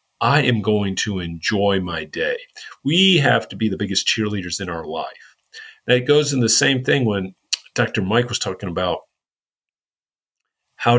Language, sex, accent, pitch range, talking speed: English, male, American, 95-125 Hz, 165 wpm